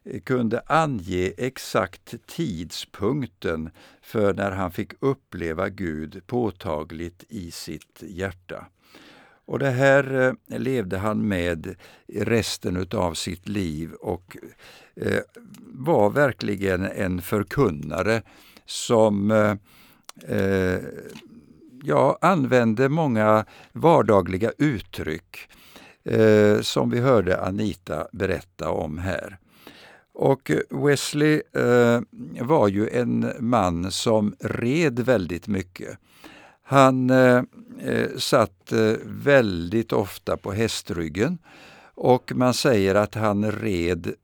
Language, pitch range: Swedish, 90-120 Hz